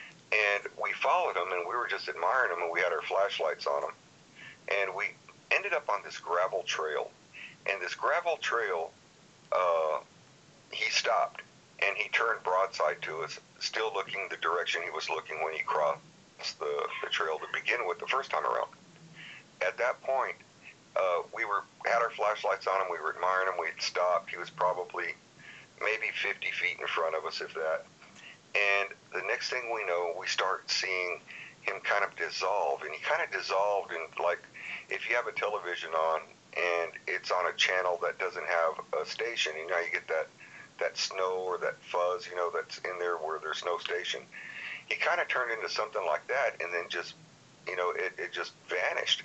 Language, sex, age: English, male, 50-69